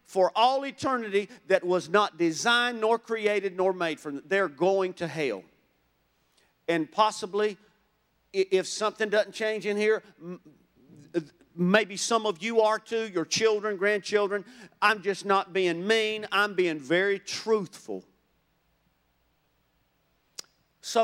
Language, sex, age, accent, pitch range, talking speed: English, male, 50-69, American, 180-225 Hz, 125 wpm